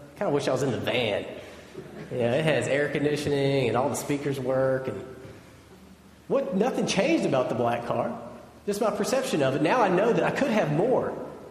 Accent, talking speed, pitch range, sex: American, 205 wpm, 120-195 Hz, male